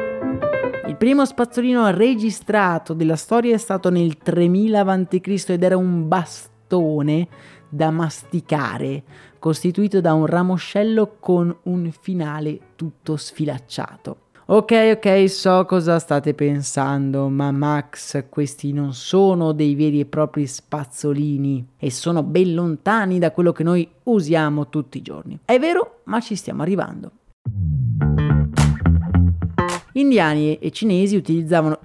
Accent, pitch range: native, 150-200 Hz